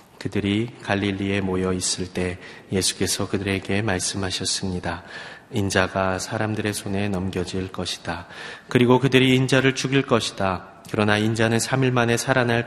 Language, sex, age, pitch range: Korean, male, 30-49, 95-115 Hz